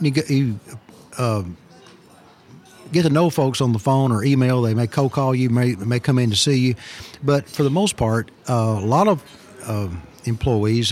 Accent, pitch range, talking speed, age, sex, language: American, 110-135 Hz, 180 wpm, 50-69, male, English